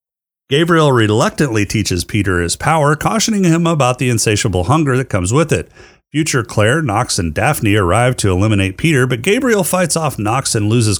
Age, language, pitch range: 30-49, English, 100-155 Hz